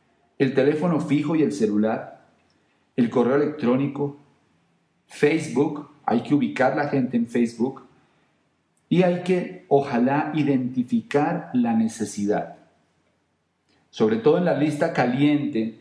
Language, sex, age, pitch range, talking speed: Spanish, male, 40-59, 115-145 Hz, 115 wpm